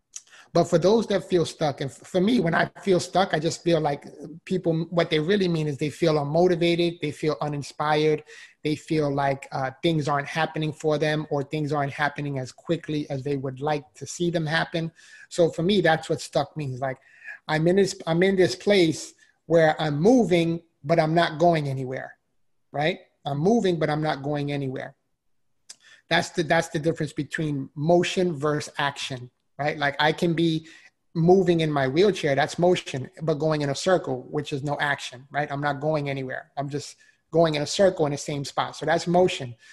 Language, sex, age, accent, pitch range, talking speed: English, male, 30-49, American, 145-175 Hz, 195 wpm